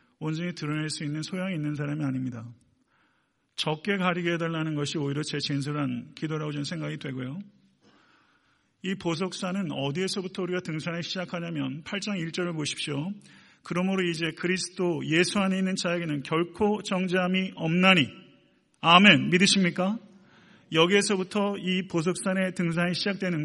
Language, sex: Korean, male